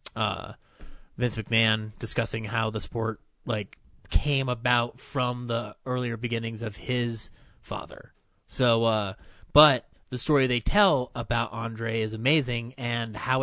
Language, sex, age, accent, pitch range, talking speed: English, male, 30-49, American, 110-130 Hz, 135 wpm